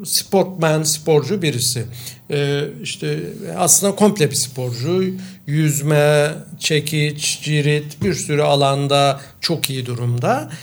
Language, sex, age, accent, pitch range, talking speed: Turkish, male, 60-79, native, 140-200 Hz, 100 wpm